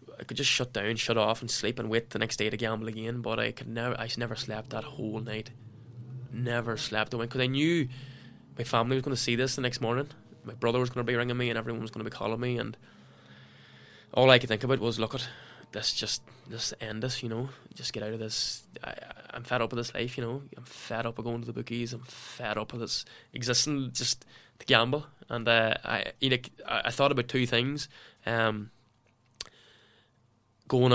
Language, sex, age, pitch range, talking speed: English, male, 10-29, 110-125 Hz, 230 wpm